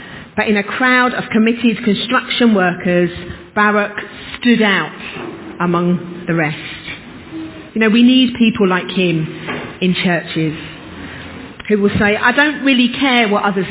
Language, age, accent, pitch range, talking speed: English, 40-59, British, 185-245 Hz, 140 wpm